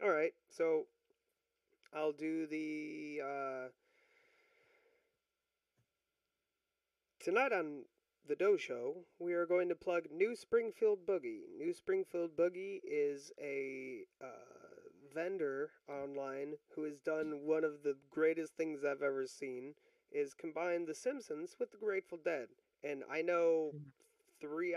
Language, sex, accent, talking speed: English, male, American, 120 wpm